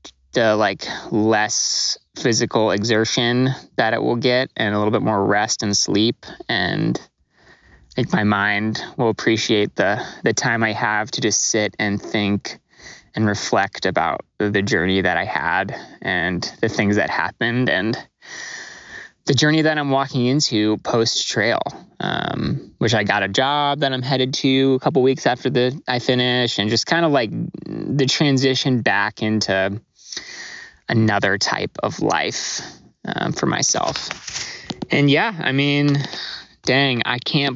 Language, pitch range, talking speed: English, 105-135 Hz, 155 wpm